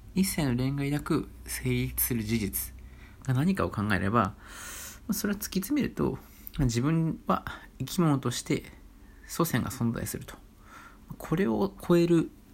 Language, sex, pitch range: Japanese, male, 100-140 Hz